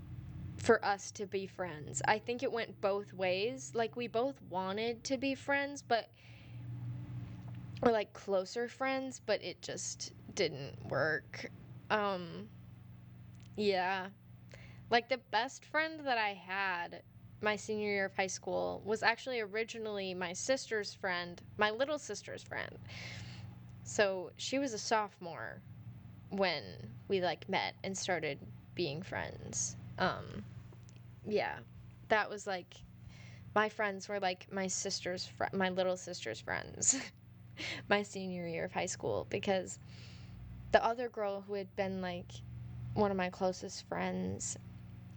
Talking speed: 135 wpm